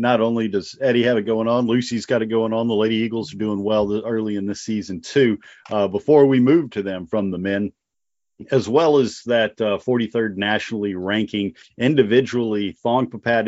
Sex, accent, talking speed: male, American, 195 wpm